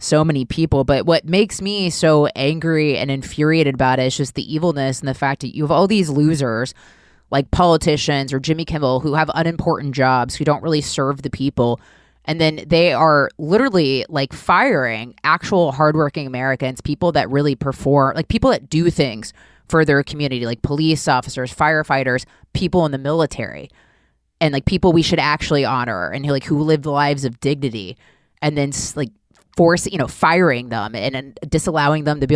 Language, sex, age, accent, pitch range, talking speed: English, female, 20-39, American, 135-165 Hz, 185 wpm